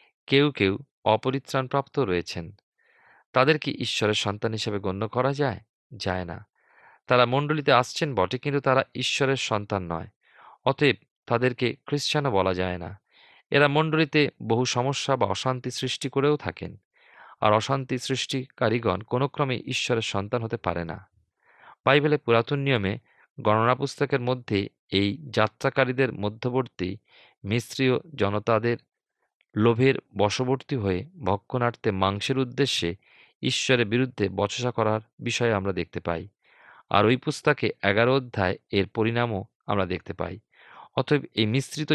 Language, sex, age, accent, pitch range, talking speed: Bengali, male, 40-59, native, 100-135 Hz, 120 wpm